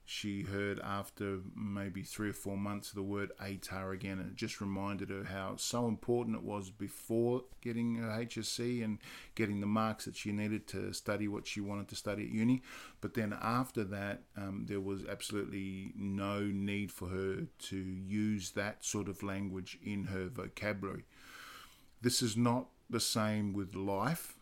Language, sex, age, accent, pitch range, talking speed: English, male, 50-69, Australian, 100-110 Hz, 175 wpm